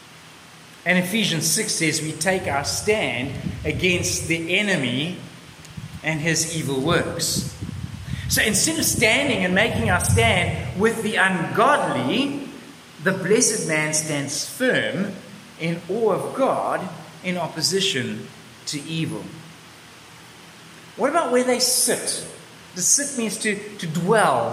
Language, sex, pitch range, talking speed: English, male, 155-220 Hz, 120 wpm